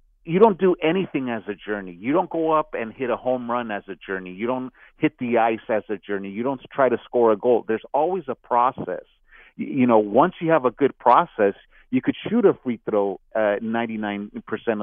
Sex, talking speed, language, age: male, 220 wpm, English, 50-69